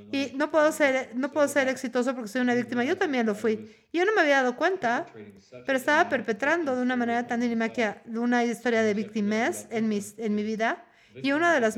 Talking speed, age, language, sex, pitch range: 230 wpm, 40-59, English, female, 210-250 Hz